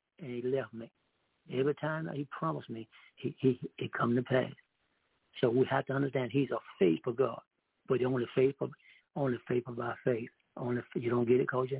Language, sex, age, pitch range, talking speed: English, male, 60-79, 120-145 Hz, 200 wpm